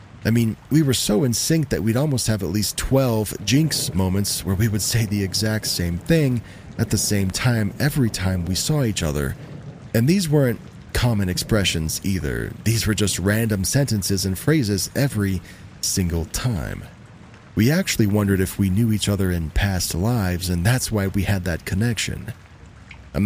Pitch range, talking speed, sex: 95-115 Hz, 180 wpm, male